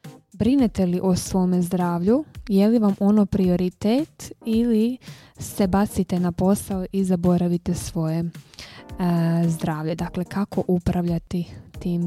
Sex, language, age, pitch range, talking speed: female, Croatian, 20-39, 180-220 Hz, 120 wpm